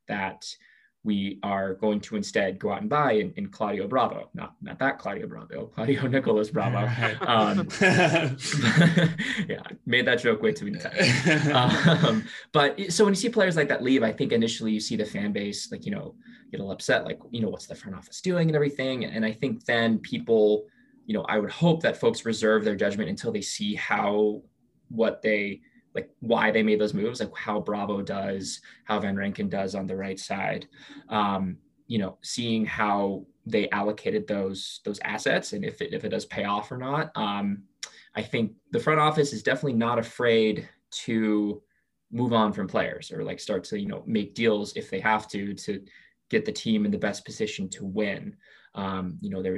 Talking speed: 200 wpm